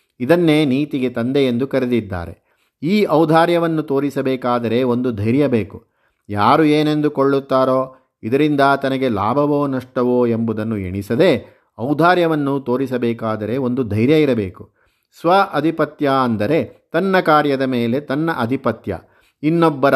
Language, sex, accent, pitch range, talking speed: Kannada, male, native, 120-150 Hz, 95 wpm